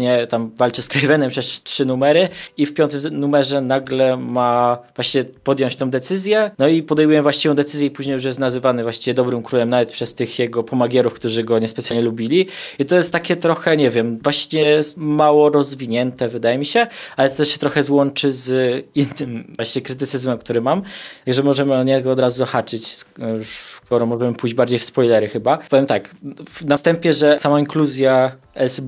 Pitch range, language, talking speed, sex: 120-145 Hz, Polish, 180 wpm, male